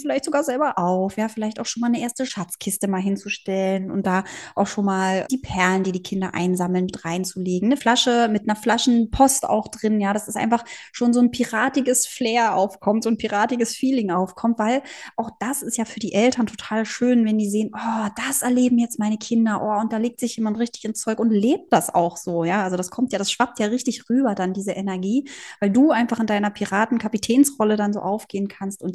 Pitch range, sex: 195-240 Hz, female